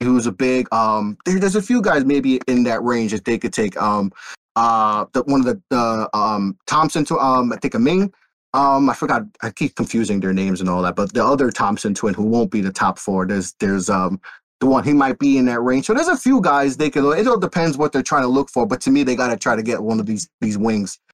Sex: male